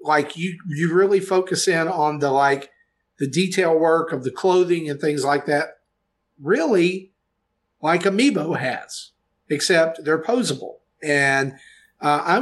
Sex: male